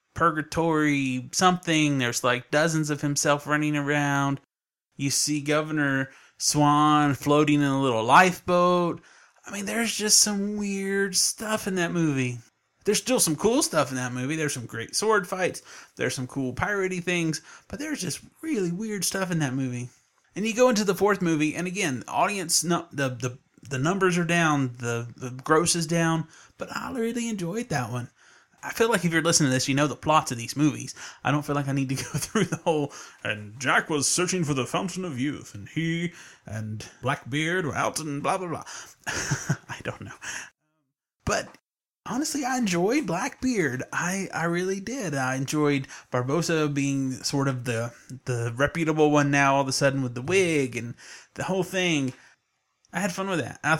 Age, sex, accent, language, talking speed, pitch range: 30-49, male, American, English, 185 wpm, 135-180 Hz